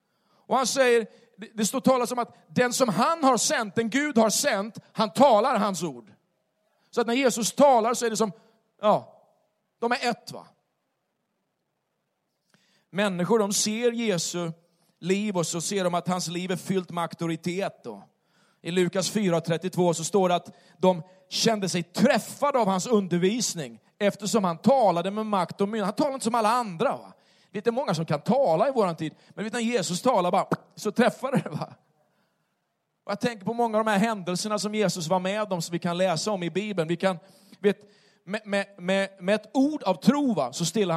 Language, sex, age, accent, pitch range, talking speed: Swedish, male, 40-59, native, 180-230 Hz, 190 wpm